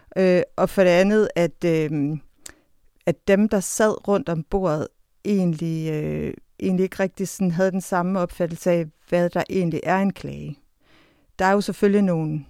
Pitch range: 155-185 Hz